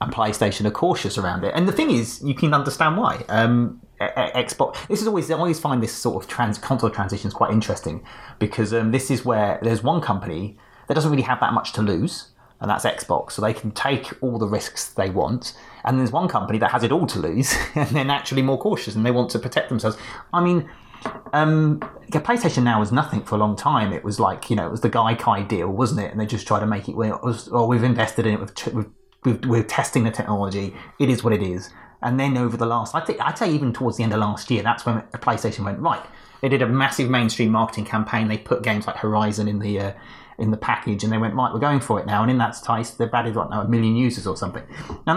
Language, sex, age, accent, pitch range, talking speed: English, male, 30-49, British, 110-140 Hz, 255 wpm